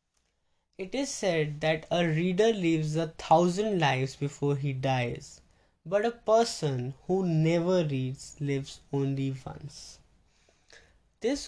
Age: 10-29